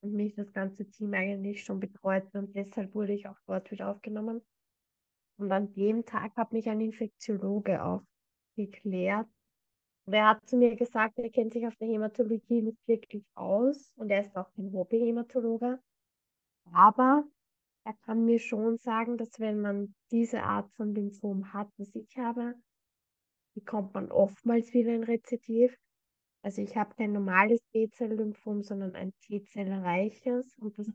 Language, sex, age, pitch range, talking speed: German, female, 20-39, 195-230 Hz, 160 wpm